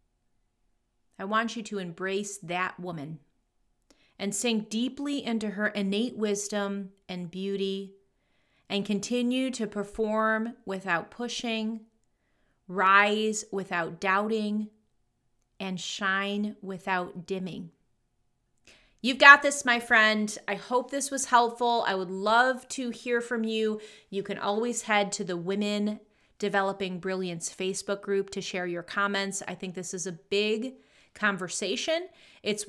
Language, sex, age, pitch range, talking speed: English, female, 30-49, 195-230 Hz, 125 wpm